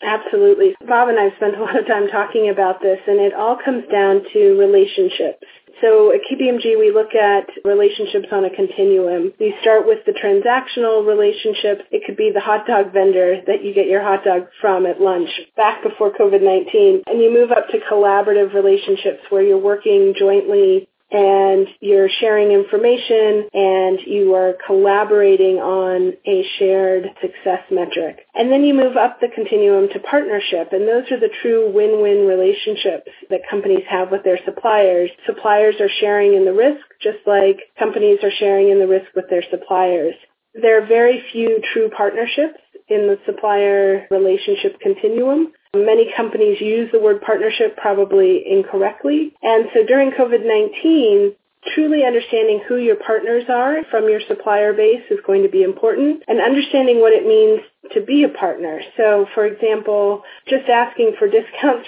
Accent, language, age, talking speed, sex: American, English, 30-49, 165 wpm, female